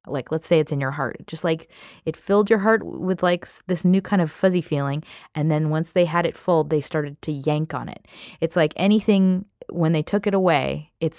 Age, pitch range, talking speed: 20-39, 155-205 Hz, 230 wpm